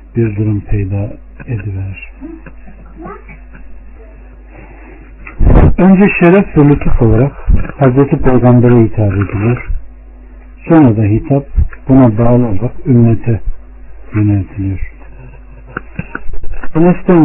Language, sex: Turkish, male